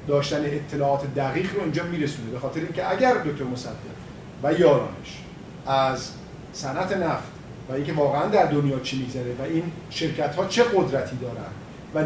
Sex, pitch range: male, 145-170 Hz